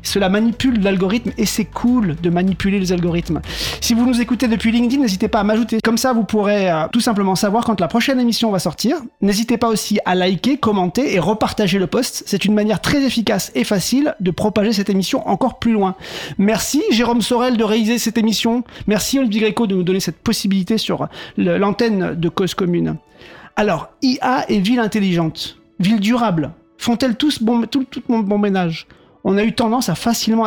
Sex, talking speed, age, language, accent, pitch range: male, 190 wpm, 40-59, French, French, 190-235 Hz